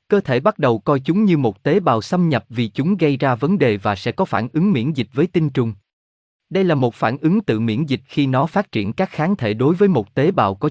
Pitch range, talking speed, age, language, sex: 115-160 Hz, 275 wpm, 20-39, Vietnamese, male